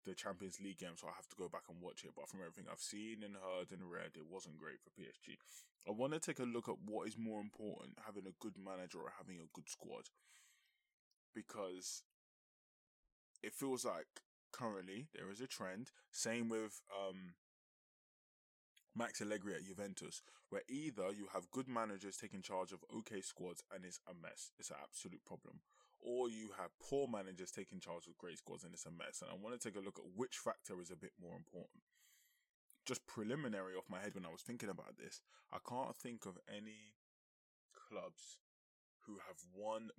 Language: English